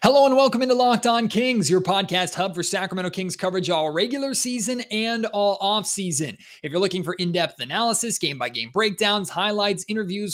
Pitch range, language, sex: 165-195 Hz, English, male